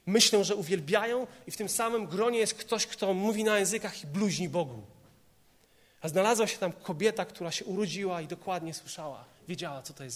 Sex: male